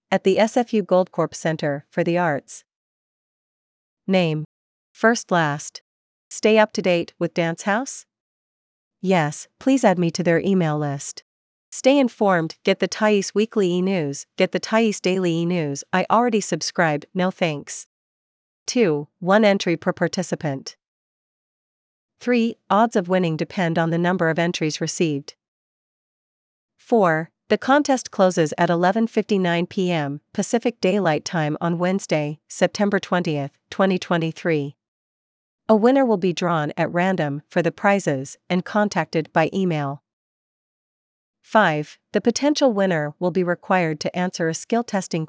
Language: English